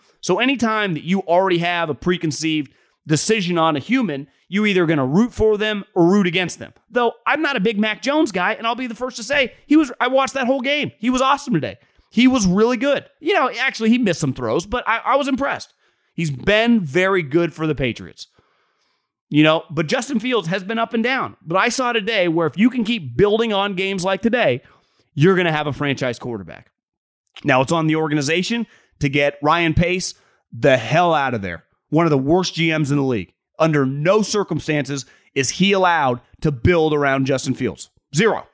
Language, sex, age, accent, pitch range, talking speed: English, male, 30-49, American, 150-225 Hz, 215 wpm